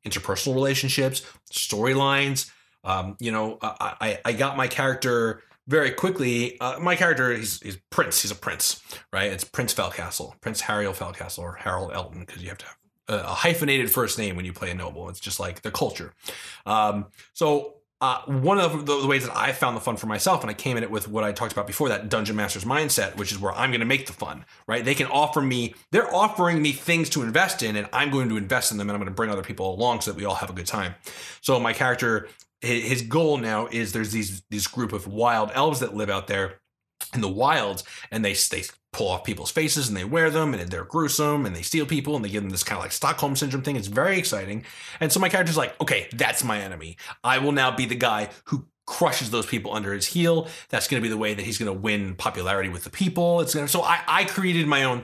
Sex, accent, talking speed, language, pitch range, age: male, American, 245 wpm, English, 105-145 Hz, 30-49